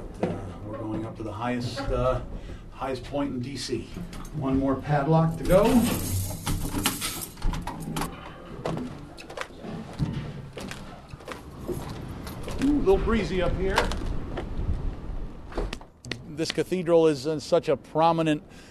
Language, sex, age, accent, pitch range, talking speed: English, male, 50-69, American, 125-160 Hz, 75 wpm